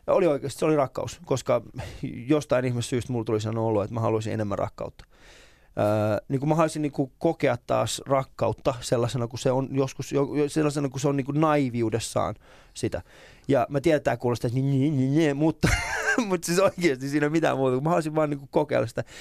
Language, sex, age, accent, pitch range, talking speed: Finnish, male, 20-39, native, 115-145 Hz, 170 wpm